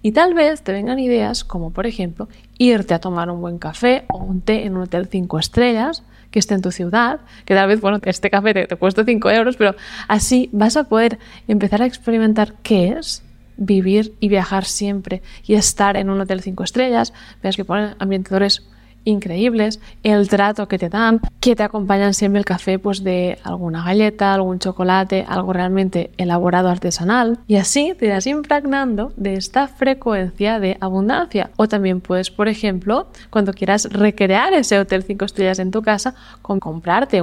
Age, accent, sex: 20-39, Spanish, female